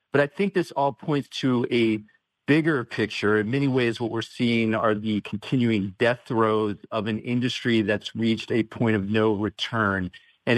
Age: 50-69